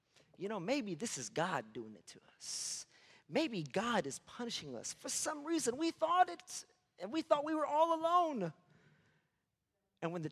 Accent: American